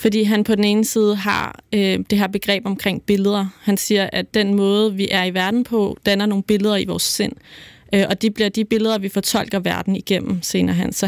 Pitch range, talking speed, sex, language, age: 190-215 Hz, 230 wpm, female, Danish, 20-39